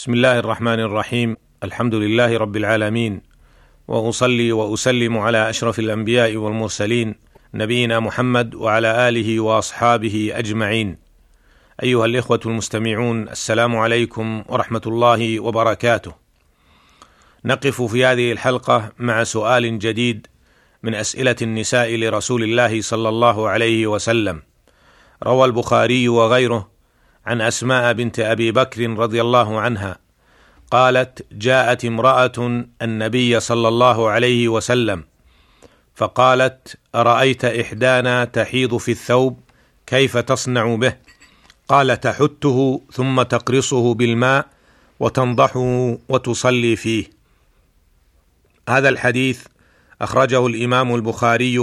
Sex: male